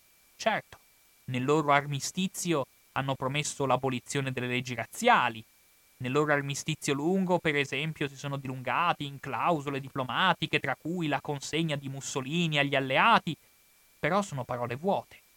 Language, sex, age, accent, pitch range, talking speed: Italian, male, 30-49, native, 140-215 Hz, 135 wpm